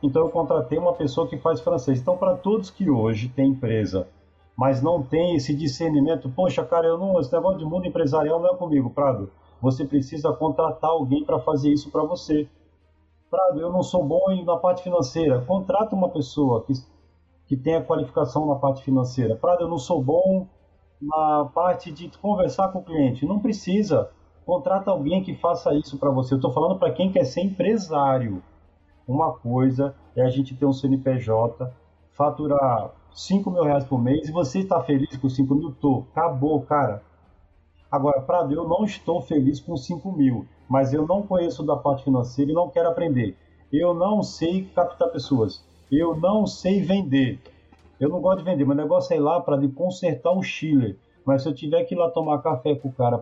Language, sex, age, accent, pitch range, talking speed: Portuguese, male, 40-59, Brazilian, 130-170 Hz, 190 wpm